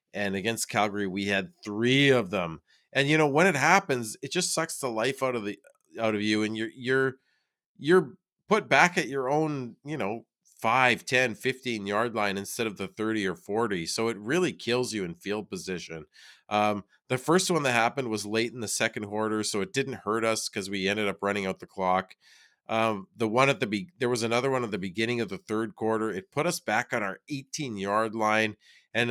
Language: English